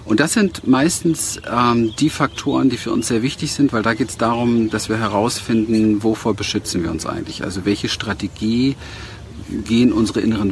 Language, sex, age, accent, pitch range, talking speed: German, male, 50-69, German, 100-125 Hz, 185 wpm